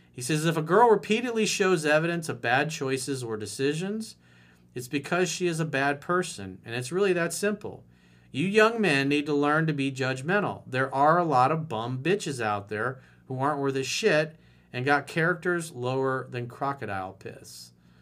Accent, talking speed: American, 185 wpm